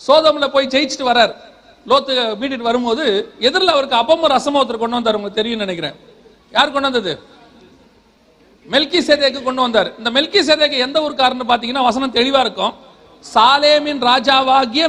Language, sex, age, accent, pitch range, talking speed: Tamil, male, 40-59, native, 225-275 Hz, 115 wpm